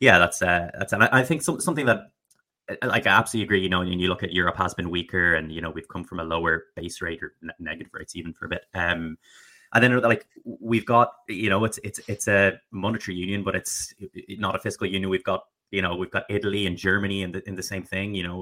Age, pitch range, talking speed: 20-39, 90-105 Hz, 255 wpm